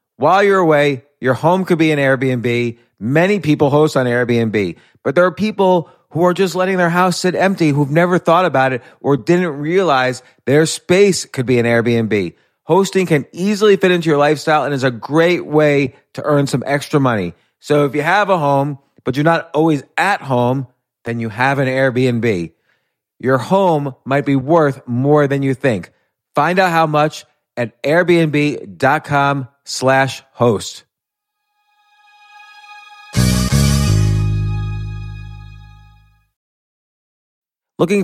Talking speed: 145 wpm